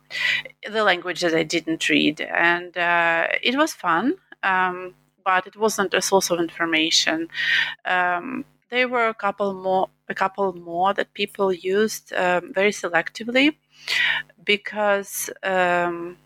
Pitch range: 170-210 Hz